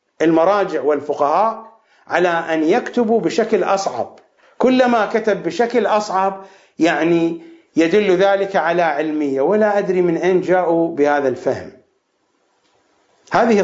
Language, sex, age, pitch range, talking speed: English, male, 50-69, 165-230 Hz, 105 wpm